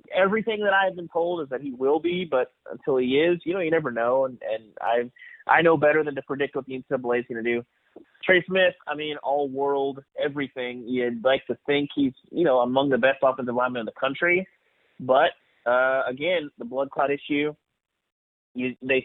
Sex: male